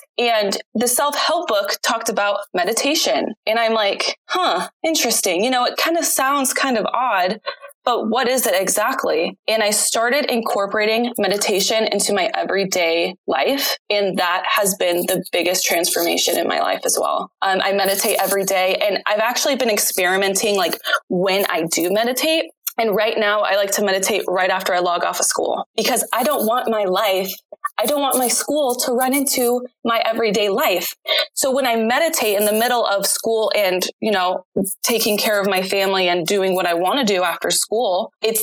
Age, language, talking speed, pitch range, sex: 20-39, English, 185 wpm, 190-240 Hz, female